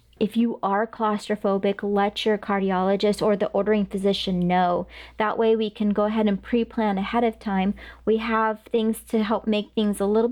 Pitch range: 200-225 Hz